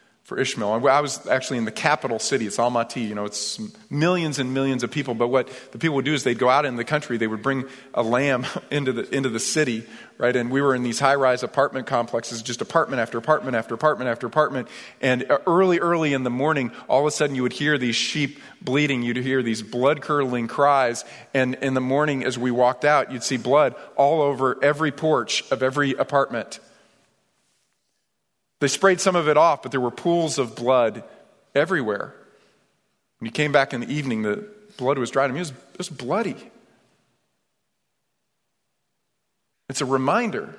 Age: 40-59